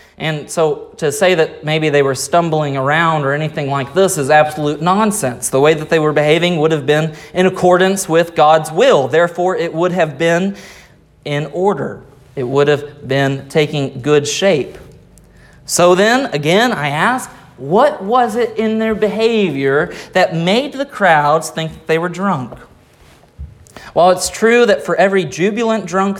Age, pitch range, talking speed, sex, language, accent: 30-49, 135-180 Hz, 165 wpm, male, English, American